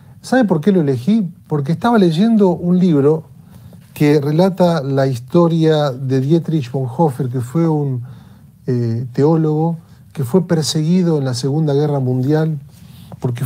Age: 40-59